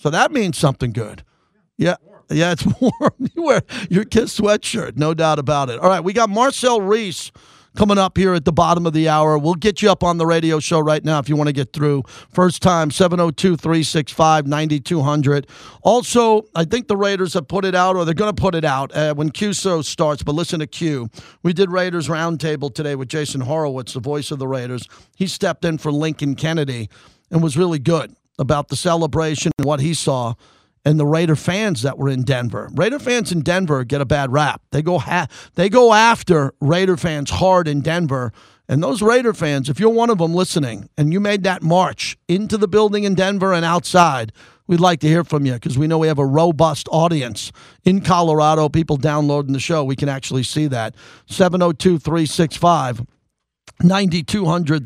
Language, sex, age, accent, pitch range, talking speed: English, male, 40-59, American, 145-185 Hz, 200 wpm